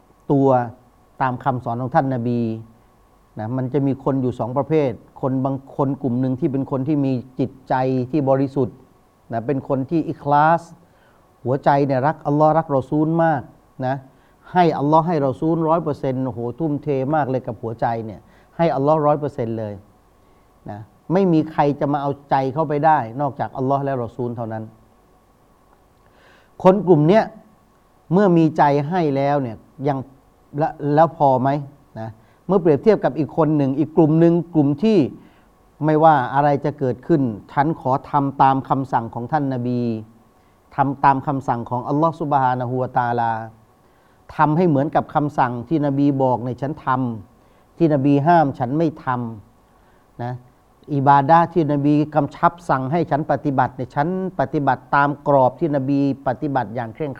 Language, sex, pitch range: Thai, male, 125-155 Hz